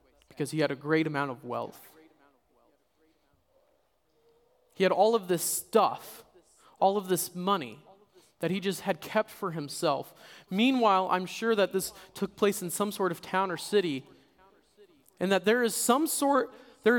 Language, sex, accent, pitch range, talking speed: English, male, American, 165-215 Hz, 165 wpm